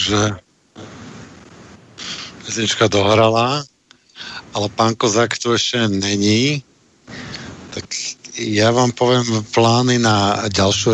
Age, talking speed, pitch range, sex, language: 50-69, 90 wpm, 105-125 Hz, male, Slovak